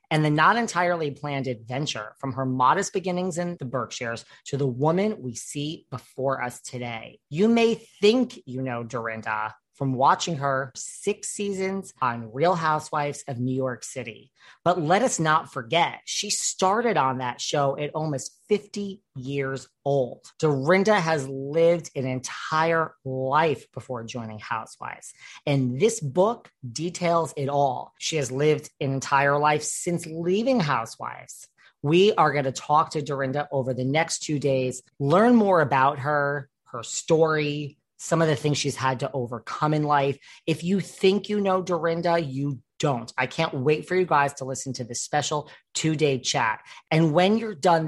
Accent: American